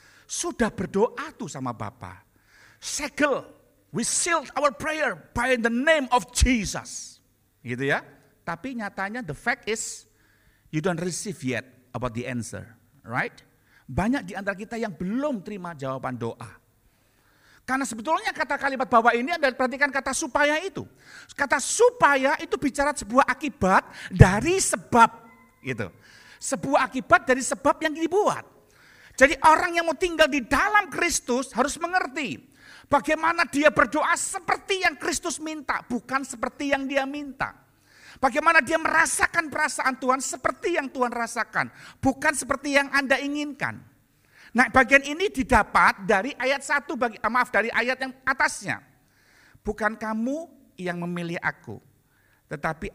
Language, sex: Indonesian, male